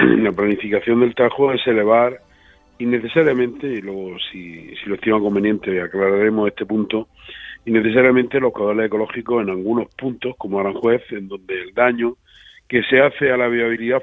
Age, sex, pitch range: 50-69, male, 105-125 Hz